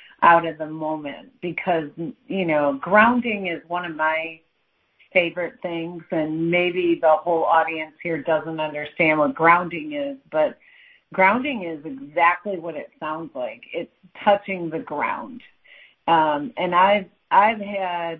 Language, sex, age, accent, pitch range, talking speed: English, female, 50-69, American, 165-205 Hz, 140 wpm